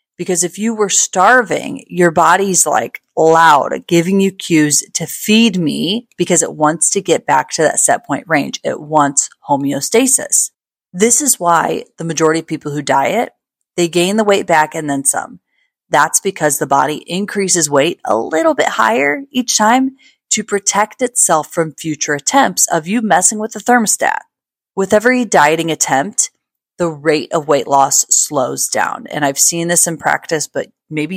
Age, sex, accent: 30-49, female, American